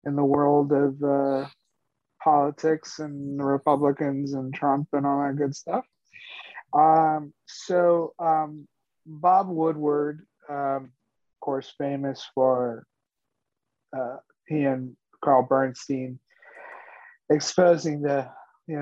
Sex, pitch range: male, 135-155 Hz